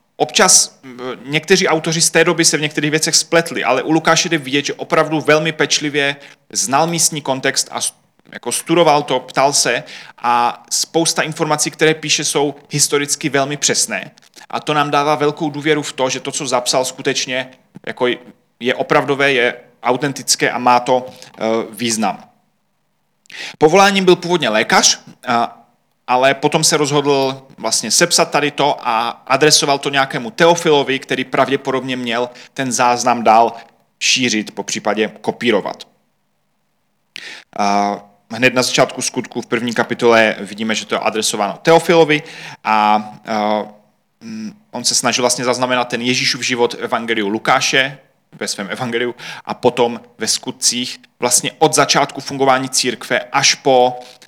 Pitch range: 125-155 Hz